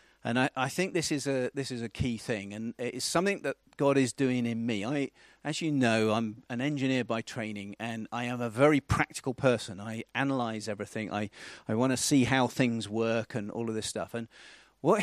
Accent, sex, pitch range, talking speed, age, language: British, male, 115-140 Hz, 225 wpm, 40-59, English